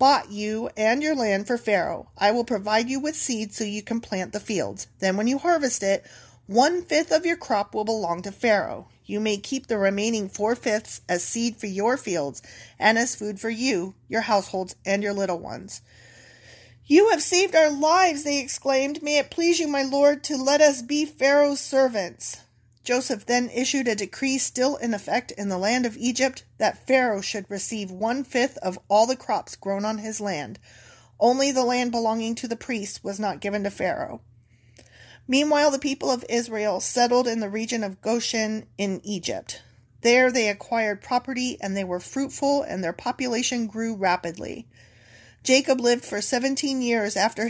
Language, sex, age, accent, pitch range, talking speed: English, female, 30-49, American, 200-255 Hz, 185 wpm